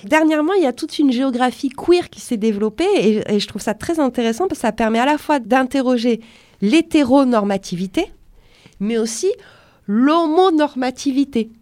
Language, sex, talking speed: French, female, 155 wpm